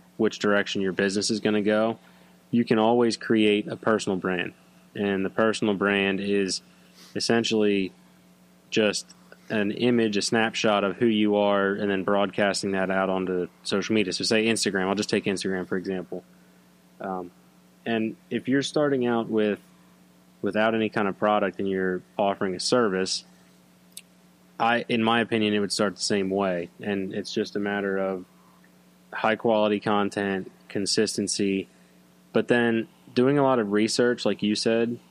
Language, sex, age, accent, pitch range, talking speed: English, male, 20-39, American, 90-105 Hz, 160 wpm